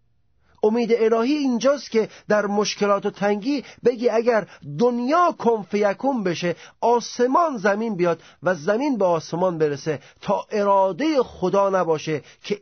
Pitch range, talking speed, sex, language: 145-205 Hz, 125 wpm, male, Persian